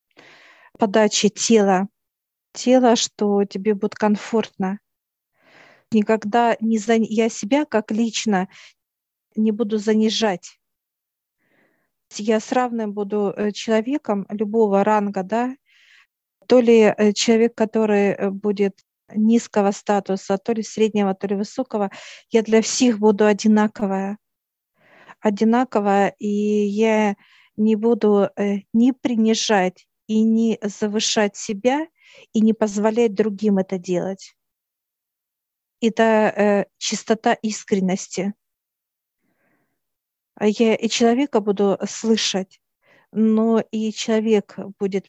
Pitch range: 200-225 Hz